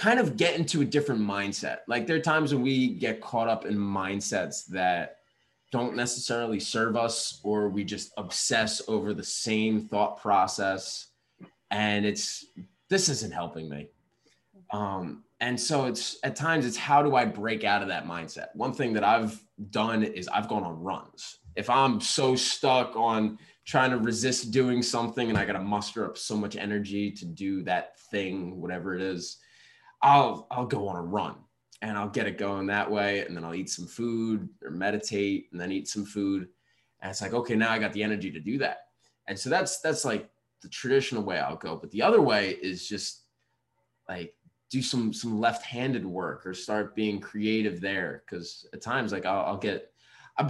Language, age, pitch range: English, 20-39, 100-125 Hz